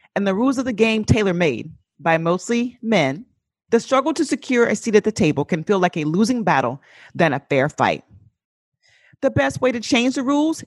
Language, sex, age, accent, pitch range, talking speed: English, female, 40-59, American, 155-245 Hz, 200 wpm